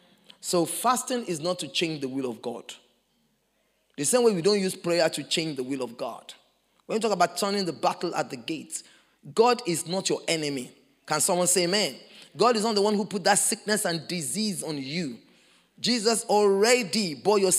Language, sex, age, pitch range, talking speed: English, male, 20-39, 185-260 Hz, 200 wpm